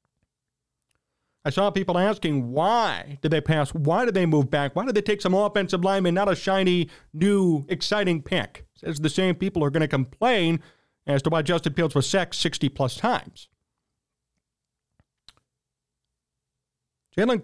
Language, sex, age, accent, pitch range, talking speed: English, male, 40-59, American, 155-210 Hz, 155 wpm